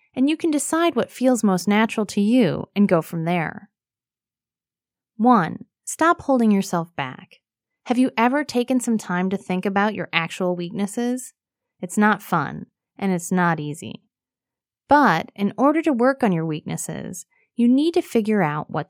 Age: 30-49